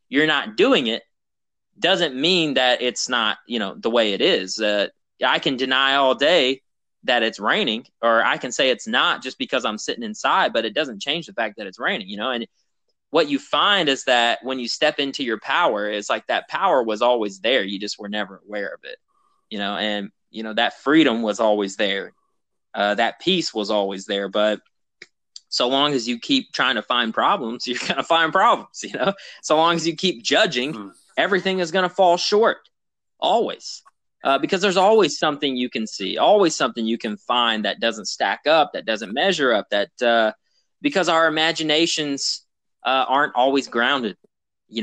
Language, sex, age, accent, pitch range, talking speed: English, male, 20-39, American, 110-165 Hz, 200 wpm